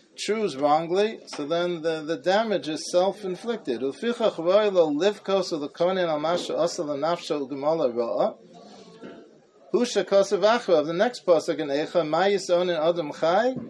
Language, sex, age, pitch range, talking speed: English, male, 40-59, 155-200 Hz, 145 wpm